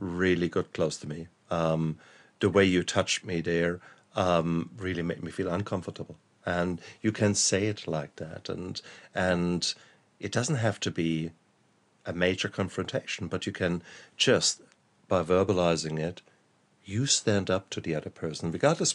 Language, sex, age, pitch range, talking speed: English, male, 50-69, 90-105 Hz, 160 wpm